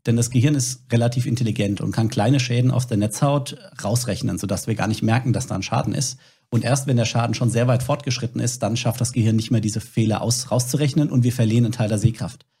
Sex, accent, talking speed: male, German, 245 wpm